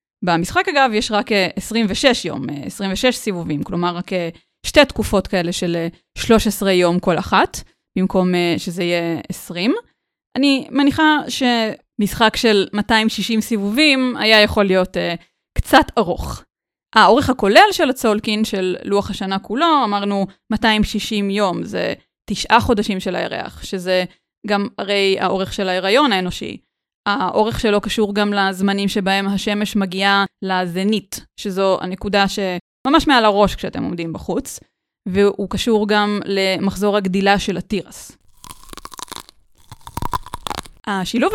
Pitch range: 190-250 Hz